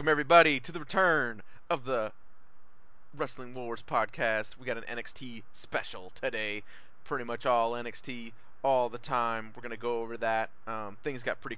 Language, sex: English, male